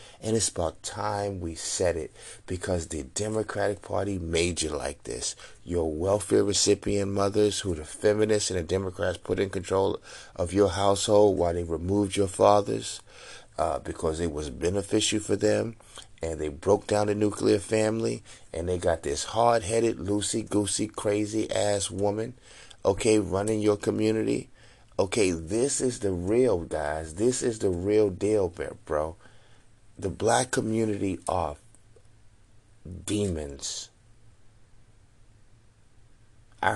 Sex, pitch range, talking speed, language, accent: male, 95-115 Hz, 130 wpm, English, American